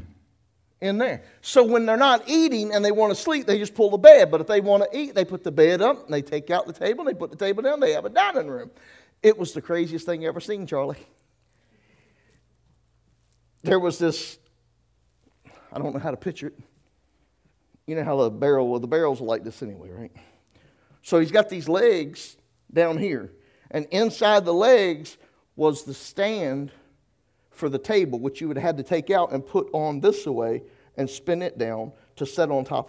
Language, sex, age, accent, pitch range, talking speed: English, male, 50-69, American, 135-200 Hz, 210 wpm